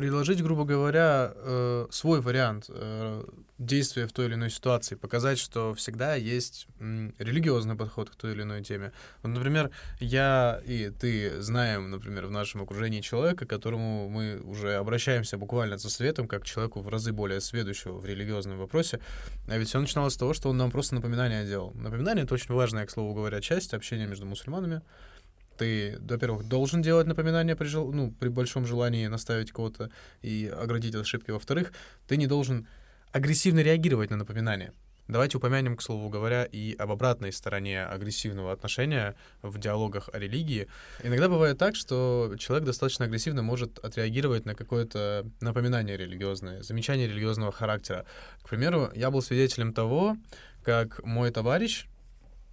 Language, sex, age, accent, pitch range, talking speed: Russian, male, 20-39, native, 105-130 Hz, 155 wpm